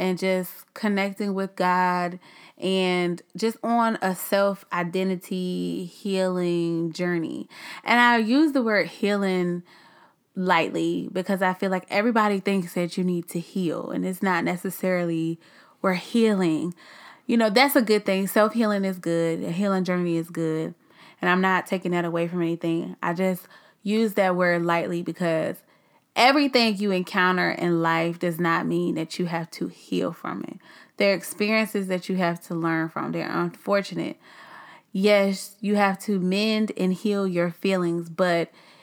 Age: 20-39